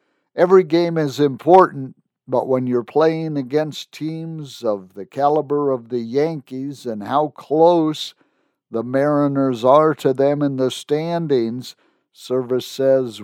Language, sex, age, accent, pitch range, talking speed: English, male, 50-69, American, 125-155 Hz, 130 wpm